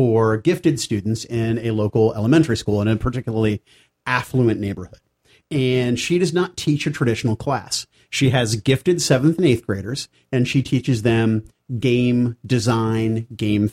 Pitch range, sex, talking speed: 110-135 Hz, male, 155 wpm